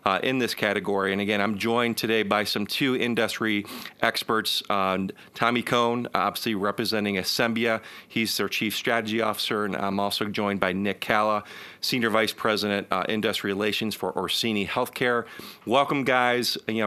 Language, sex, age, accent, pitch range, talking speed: English, male, 40-59, American, 100-115 Hz, 155 wpm